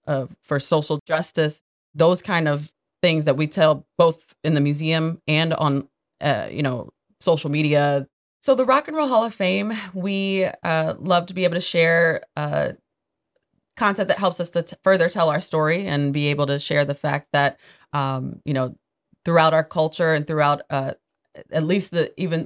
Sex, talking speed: female, 185 wpm